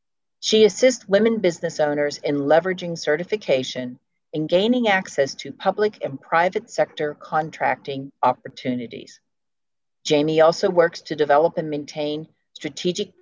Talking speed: 120 wpm